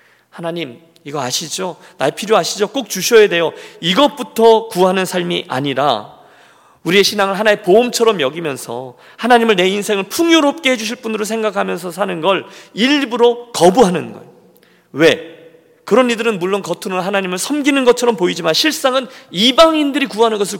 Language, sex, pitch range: Korean, male, 145-225 Hz